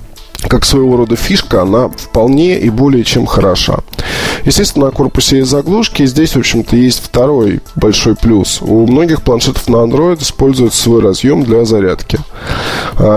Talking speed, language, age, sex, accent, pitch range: 155 wpm, Russian, 20-39, male, native, 105-130 Hz